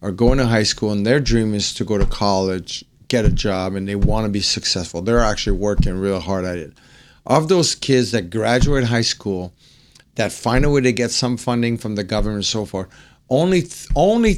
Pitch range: 100-125 Hz